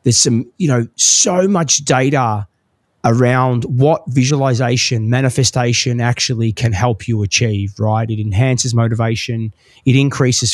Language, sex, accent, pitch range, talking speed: English, male, Australian, 120-150 Hz, 125 wpm